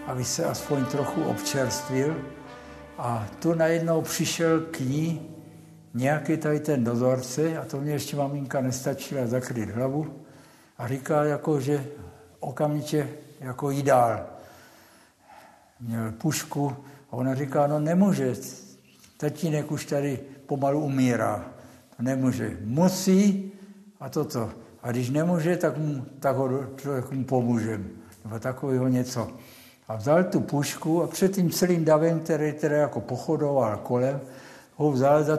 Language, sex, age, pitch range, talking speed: Czech, male, 60-79, 120-150 Hz, 130 wpm